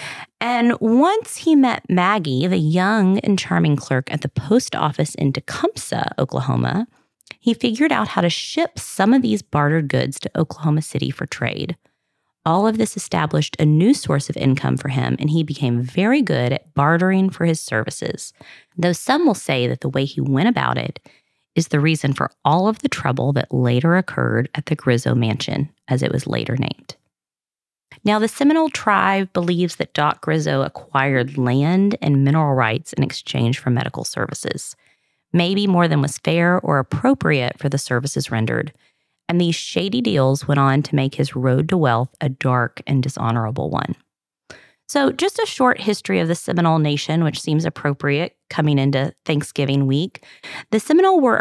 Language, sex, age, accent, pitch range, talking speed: English, female, 30-49, American, 140-195 Hz, 175 wpm